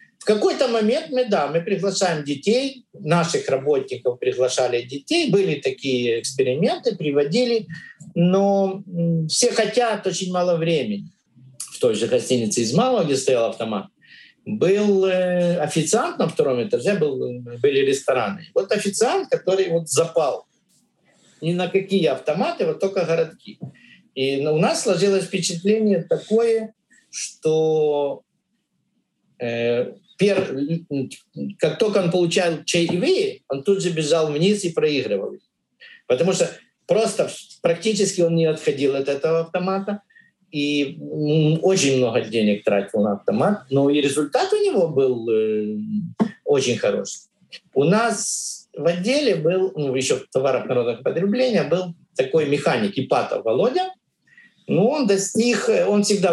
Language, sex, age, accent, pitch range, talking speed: Russian, male, 50-69, native, 155-225 Hz, 120 wpm